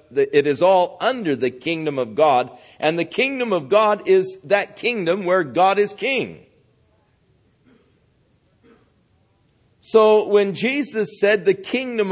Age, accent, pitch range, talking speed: 50-69, American, 150-215 Hz, 130 wpm